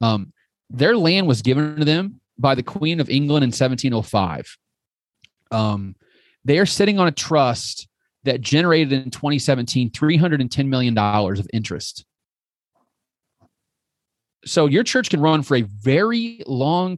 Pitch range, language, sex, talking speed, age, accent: 115-165 Hz, English, male, 135 wpm, 30-49, American